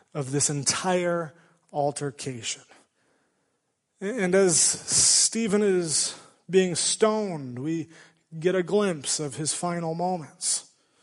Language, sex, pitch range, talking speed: English, male, 165-205 Hz, 100 wpm